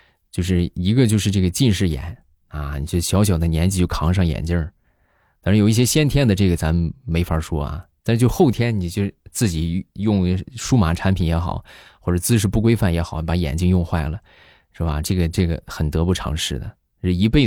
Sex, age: male, 20-39